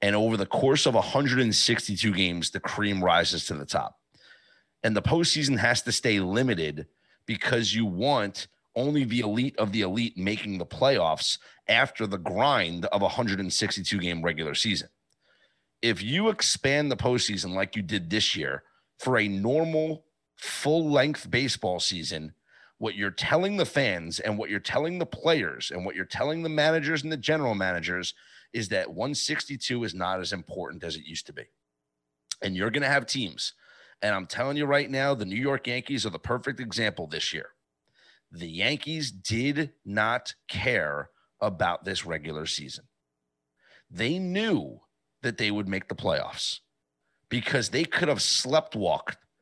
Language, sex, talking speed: English, male, 165 wpm